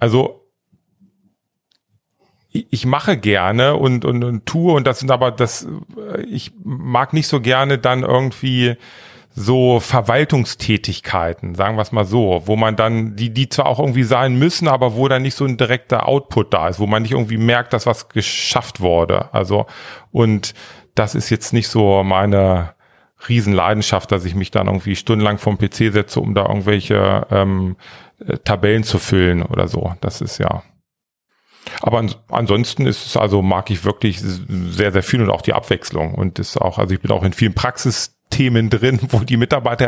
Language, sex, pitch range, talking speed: German, male, 100-125 Hz, 175 wpm